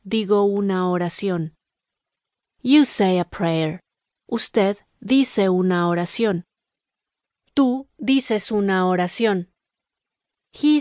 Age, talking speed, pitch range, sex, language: 30-49, 90 wpm, 175-220 Hz, female, Spanish